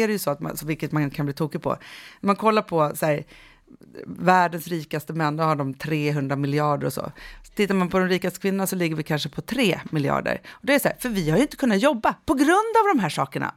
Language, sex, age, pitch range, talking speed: Swedish, female, 30-49, 150-195 Hz, 260 wpm